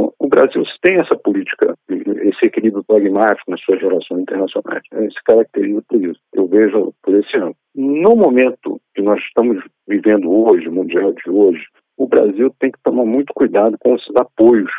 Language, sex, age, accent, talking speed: Portuguese, male, 50-69, Brazilian, 165 wpm